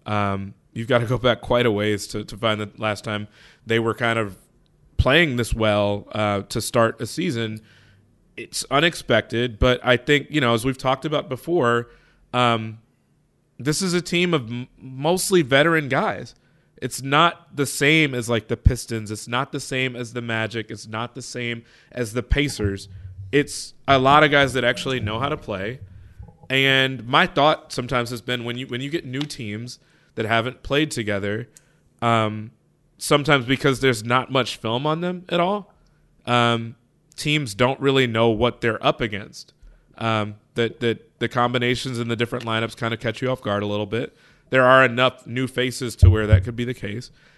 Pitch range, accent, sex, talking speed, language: 115-140 Hz, American, male, 190 wpm, English